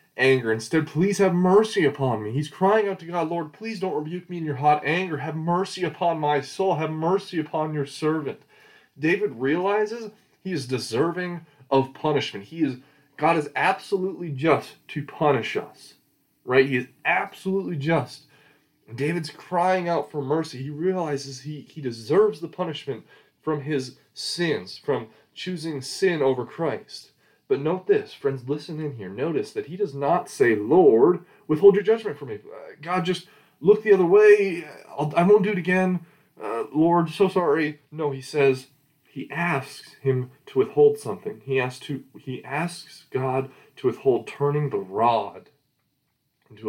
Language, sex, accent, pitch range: English, male, American, 140-190 Hz